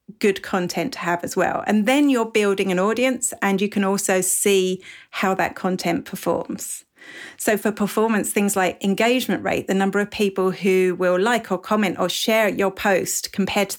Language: English